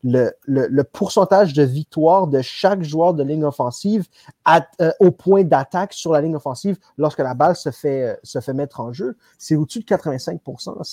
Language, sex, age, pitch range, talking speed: French, male, 30-49, 125-165 Hz, 200 wpm